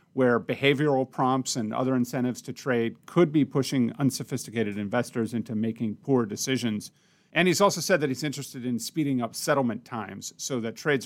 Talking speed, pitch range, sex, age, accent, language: 175 wpm, 115-150 Hz, male, 40-59, American, English